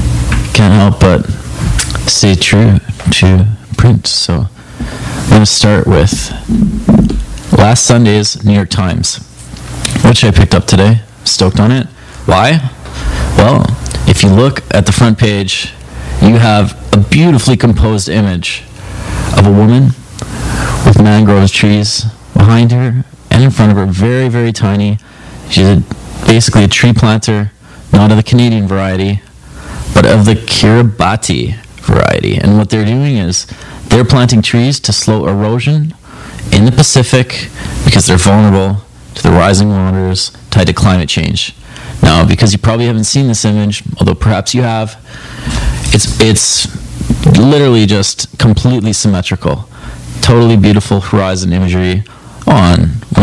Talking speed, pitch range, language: 135 wpm, 95-115 Hz, English